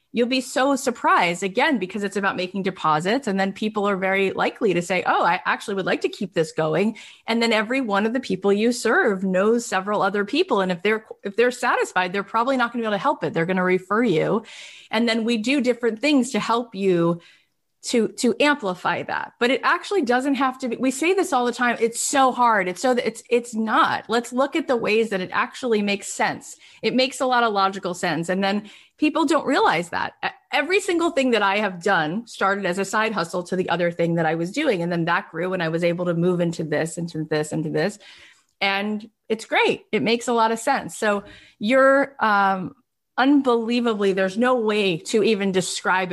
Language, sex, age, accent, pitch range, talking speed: English, female, 30-49, American, 180-245 Hz, 225 wpm